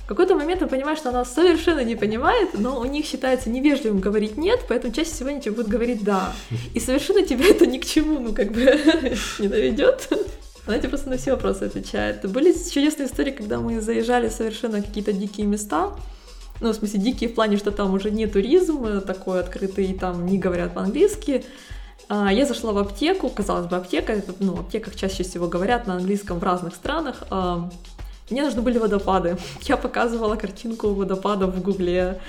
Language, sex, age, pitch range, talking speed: Russian, female, 20-39, 200-275 Hz, 190 wpm